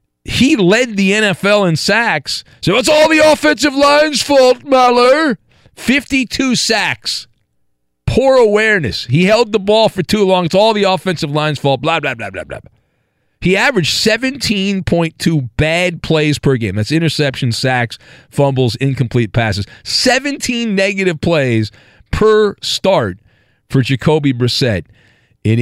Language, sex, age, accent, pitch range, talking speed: English, male, 50-69, American, 120-195 Hz, 135 wpm